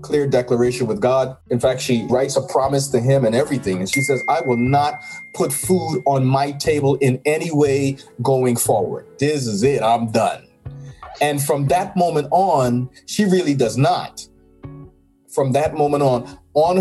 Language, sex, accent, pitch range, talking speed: English, male, American, 125-170 Hz, 175 wpm